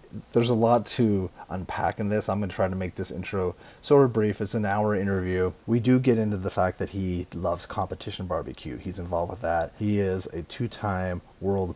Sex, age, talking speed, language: male, 30-49, 215 wpm, English